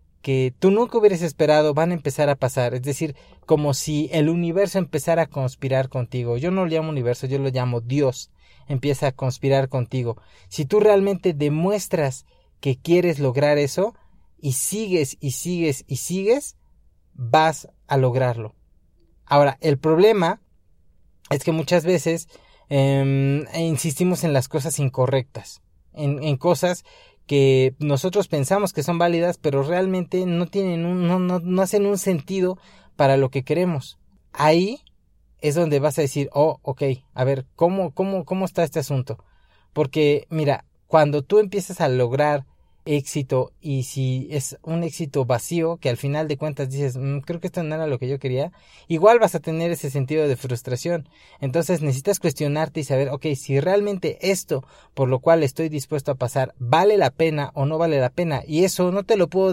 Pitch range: 135-175 Hz